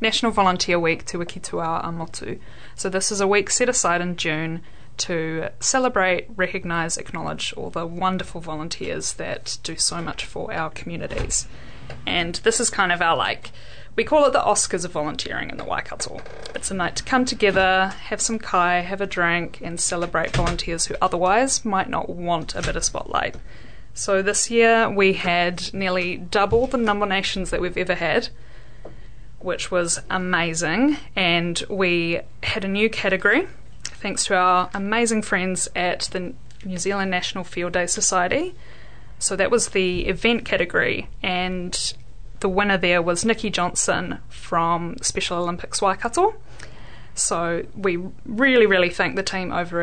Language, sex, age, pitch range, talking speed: English, female, 20-39, 170-205 Hz, 160 wpm